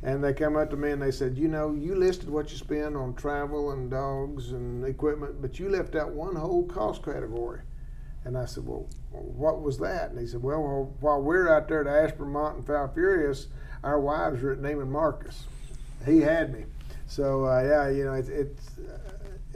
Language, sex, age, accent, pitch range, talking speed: English, male, 50-69, American, 130-150 Hz, 210 wpm